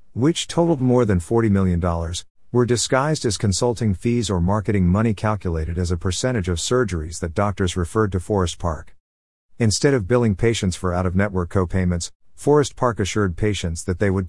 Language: English